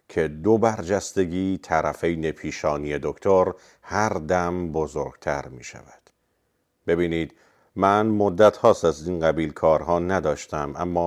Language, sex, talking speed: Persian, male, 115 wpm